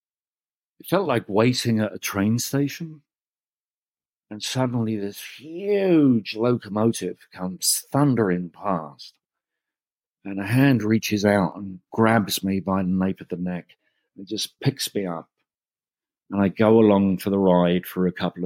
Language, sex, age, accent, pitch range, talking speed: English, male, 50-69, British, 85-105 Hz, 145 wpm